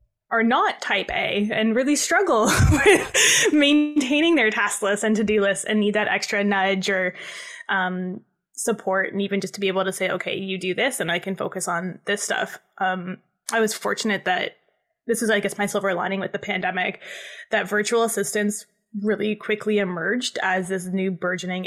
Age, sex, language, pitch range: 20-39, female, English, 190-220 Hz